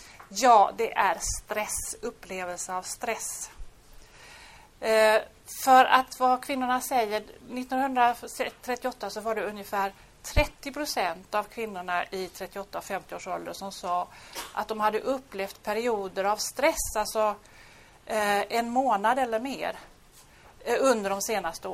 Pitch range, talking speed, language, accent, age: 205-255 Hz, 120 wpm, Swedish, native, 30-49